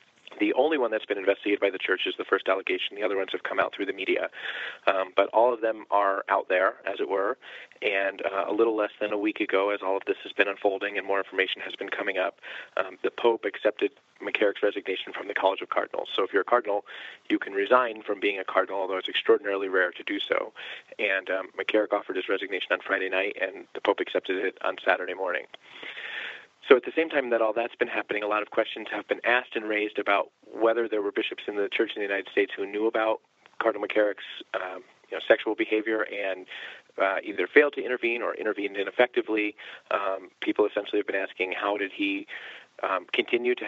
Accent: American